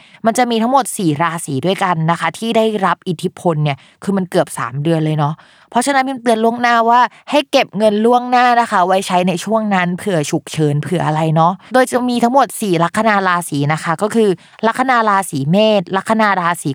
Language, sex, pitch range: Thai, female, 165-220 Hz